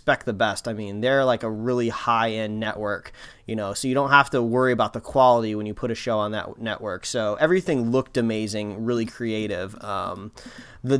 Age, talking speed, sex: 20-39, 195 wpm, male